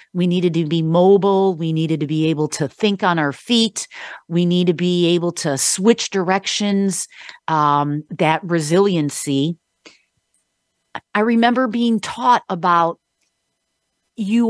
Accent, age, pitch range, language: American, 50-69, 165-215 Hz, English